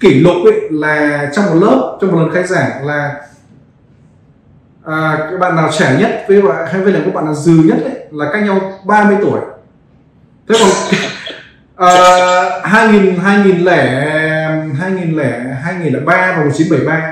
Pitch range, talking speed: 145-190 Hz, 180 wpm